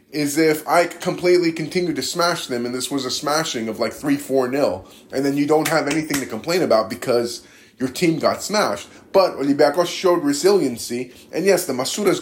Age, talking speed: 20-39, 185 wpm